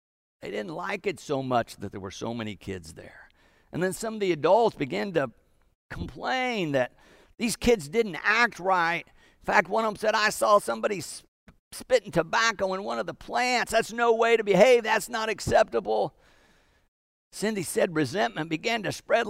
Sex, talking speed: male, 180 wpm